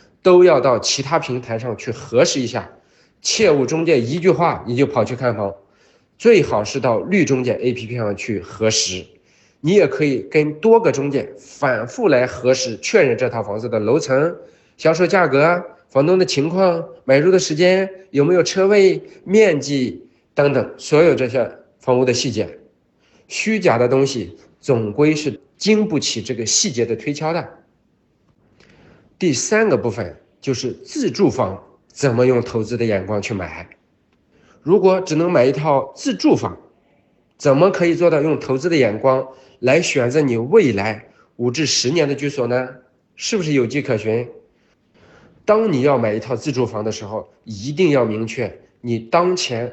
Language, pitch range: Chinese, 115-170 Hz